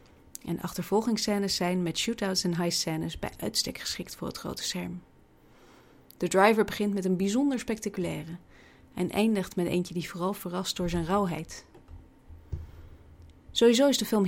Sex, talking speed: female, 145 wpm